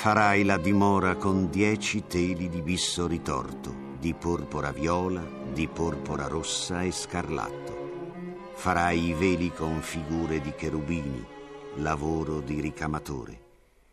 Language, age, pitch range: Italian, 50-69, 80-100 Hz